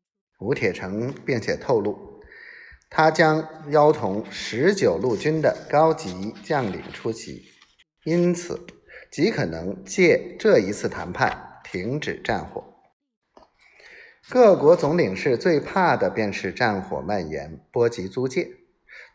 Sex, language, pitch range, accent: male, Chinese, 130-210 Hz, native